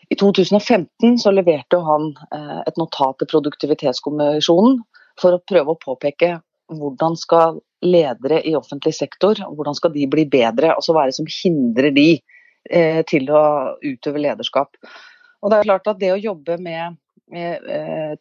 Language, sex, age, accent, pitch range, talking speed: English, female, 30-49, Swedish, 155-210 Hz, 150 wpm